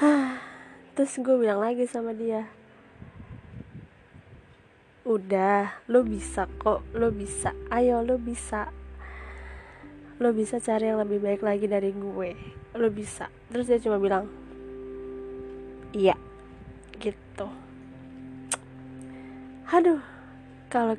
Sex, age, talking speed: female, 20-39, 95 wpm